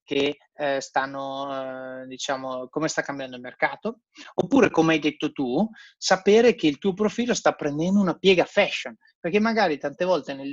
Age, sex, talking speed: 30-49, male, 160 wpm